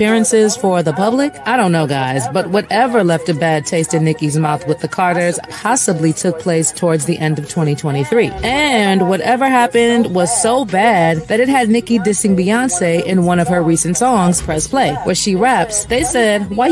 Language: English